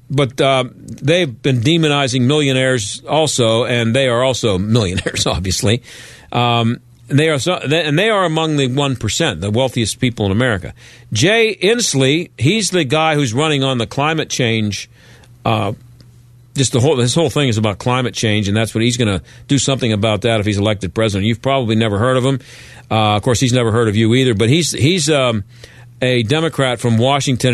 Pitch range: 120-155 Hz